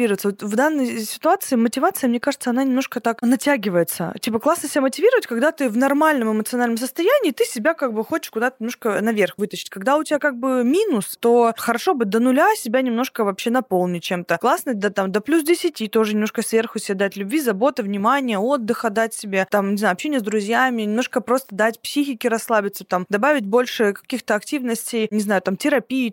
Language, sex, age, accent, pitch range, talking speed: Russian, female, 20-39, native, 210-265 Hz, 190 wpm